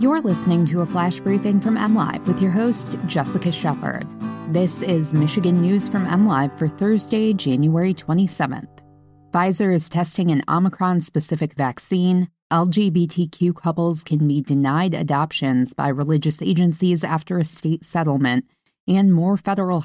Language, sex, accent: English, female, American